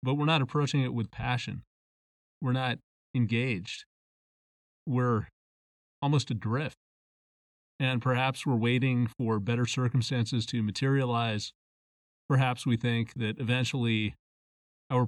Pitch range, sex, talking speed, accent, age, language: 110-135 Hz, male, 110 wpm, American, 30-49, English